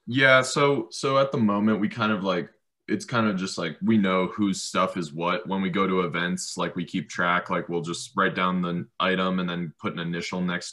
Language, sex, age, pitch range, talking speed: English, male, 20-39, 80-95 Hz, 240 wpm